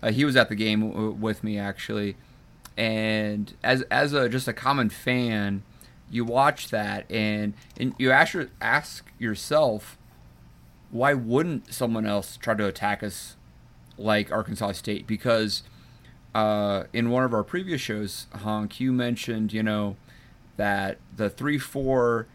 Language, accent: English, American